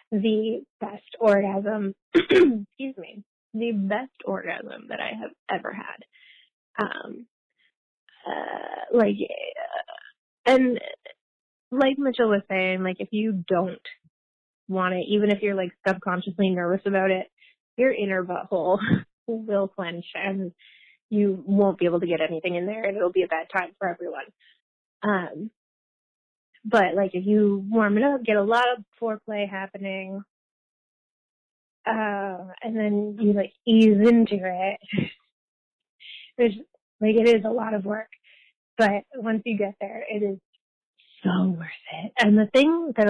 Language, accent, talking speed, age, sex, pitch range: English, American, 145 wpm, 20-39, female, 195-220 Hz